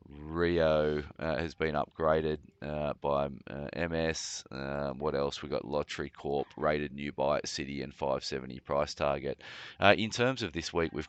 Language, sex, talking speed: English, male, 170 wpm